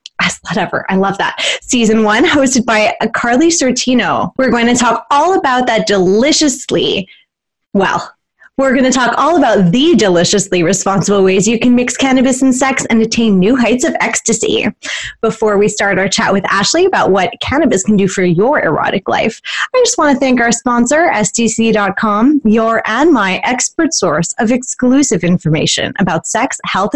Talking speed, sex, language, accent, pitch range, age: 170 wpm, female, English, American, 210-265 Hz, 20-39